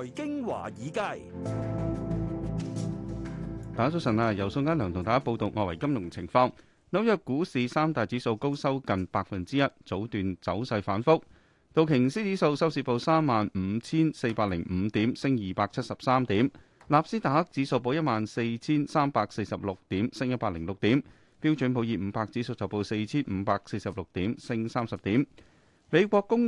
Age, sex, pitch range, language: 30-49, male, 105-140 Hz, Chinese